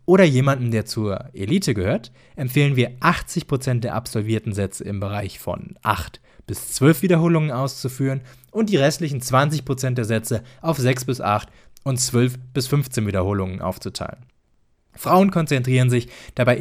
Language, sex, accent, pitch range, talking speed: English, male, German, 110-145 Hz, 145 wpm